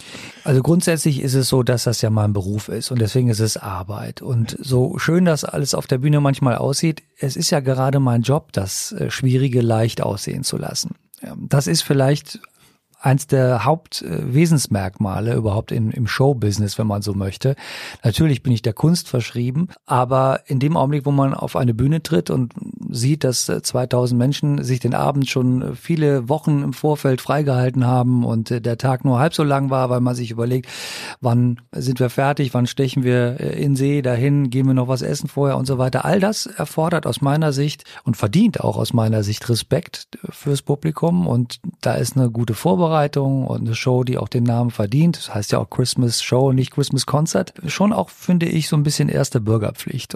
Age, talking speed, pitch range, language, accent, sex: 40-59, 195 wpm, 125-155 Hz, German, German, male